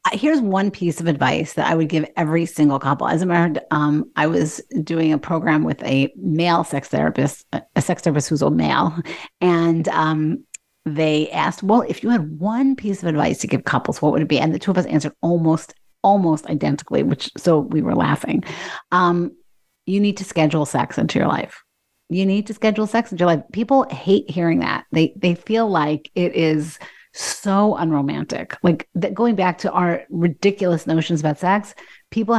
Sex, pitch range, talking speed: female, 160-210 Hz, 195 wpm